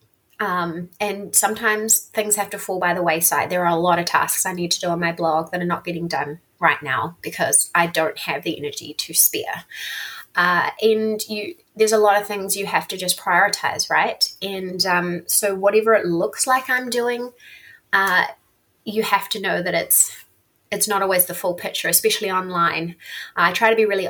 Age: 20-39